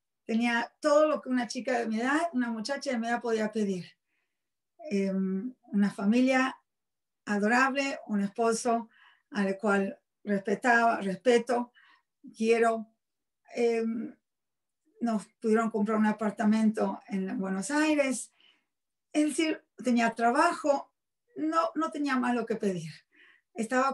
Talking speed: 120 wpm